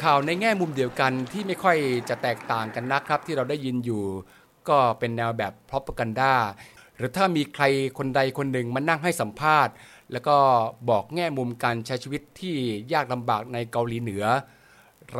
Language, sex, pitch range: Thai, male, 120-150 Hz